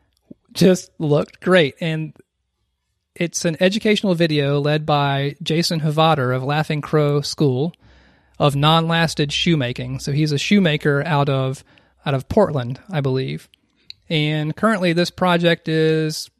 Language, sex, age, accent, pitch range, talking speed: English, male, 30-49, American, 140-165 Hz, 130 wpm